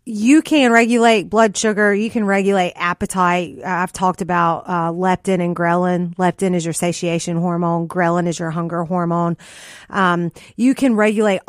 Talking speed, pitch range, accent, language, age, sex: 155 wpm, 175-205 Hz, American, English, 30-49, female